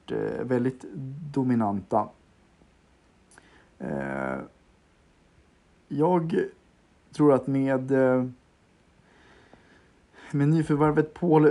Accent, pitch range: native, 115-140 Hz